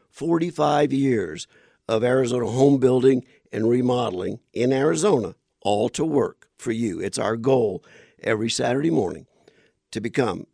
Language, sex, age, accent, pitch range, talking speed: English, male, 50-69, American, 120-170 Hz, 130 wpm